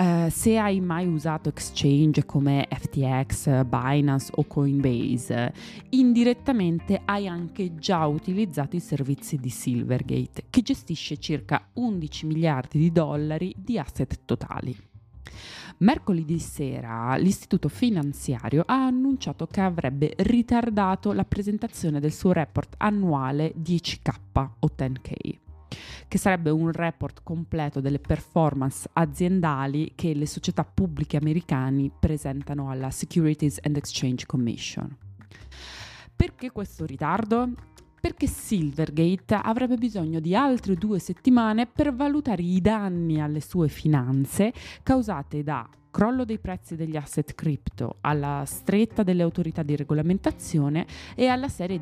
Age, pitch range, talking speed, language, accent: 20-39, 140-190 Hz, 115 wpm, Italian, native